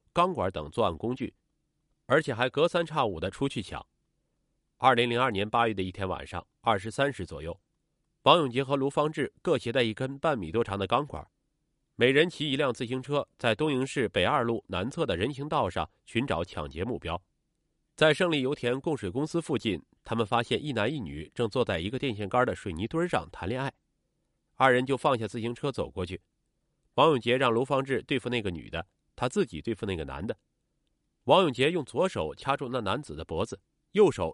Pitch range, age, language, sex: 100-150 Hz, 30-49, Chinese, male